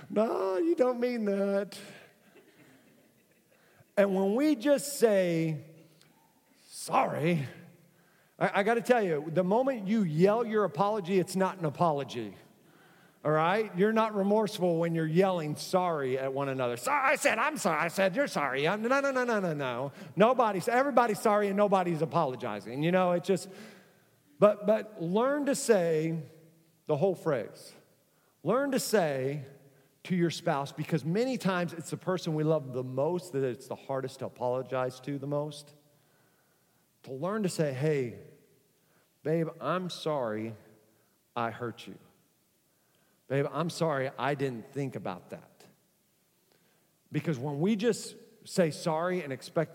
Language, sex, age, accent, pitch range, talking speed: English, male, 40-59, American, 145-200 Hz, 150 wpm